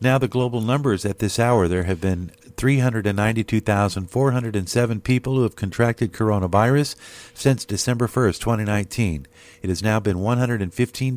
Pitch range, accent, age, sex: 95-120 Hz, American, 50-69, male